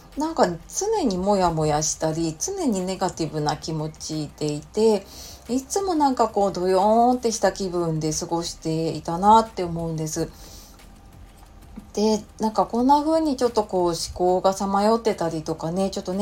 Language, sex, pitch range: Japanese, female, 160-230 Hz